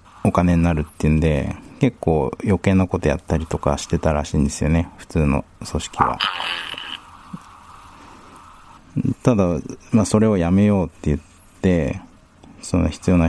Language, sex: Japanese, male